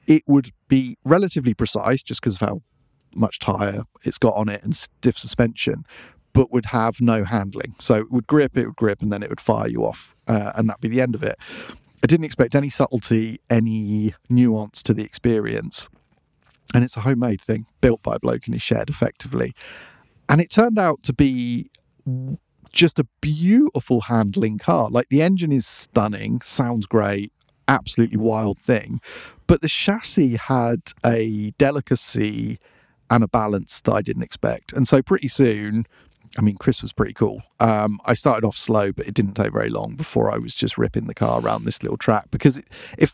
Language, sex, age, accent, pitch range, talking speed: English, male, 40-59, British, 110-140 Hz, 190 wpm